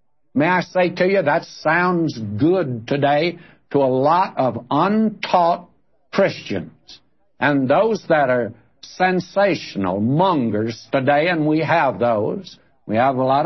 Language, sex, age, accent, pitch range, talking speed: English, male, 60-79, American, 130-180 Hz, 135 wpm